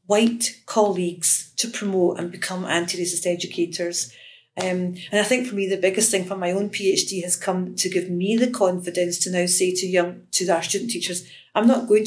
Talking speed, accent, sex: 200 wpm, British, female